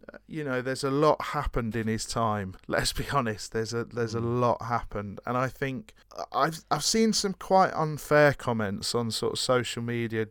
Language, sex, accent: English, male, British